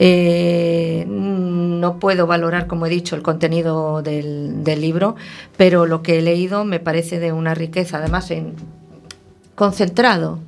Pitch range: 170-210 Hz